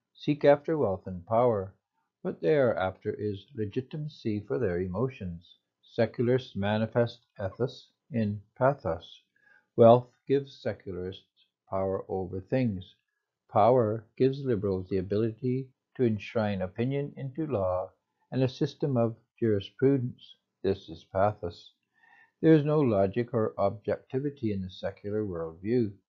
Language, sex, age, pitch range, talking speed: English, male, 60-79, 95-130 Hz, 120 wpm